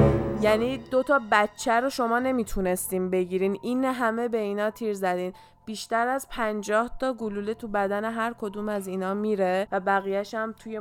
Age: 20-39